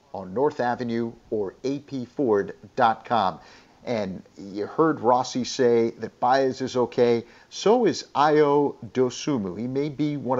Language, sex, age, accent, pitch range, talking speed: English, male, 50-69, American, 120-145 Hz, 125 wpm